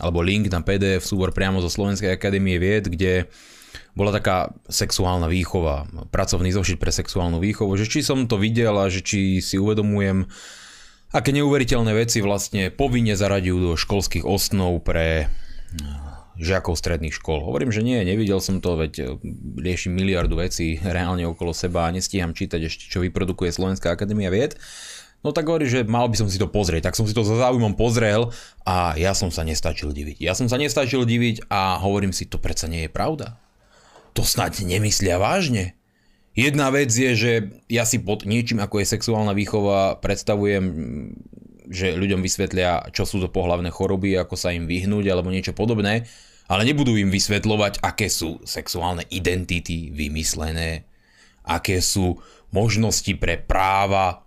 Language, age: Slovak, 20-39